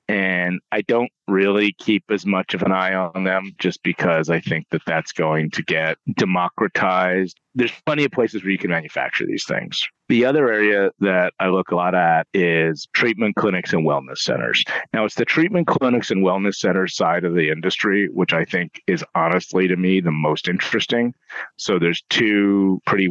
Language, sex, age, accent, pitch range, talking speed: English, male, 40-59, American, 85-105 Hz, 190 wpm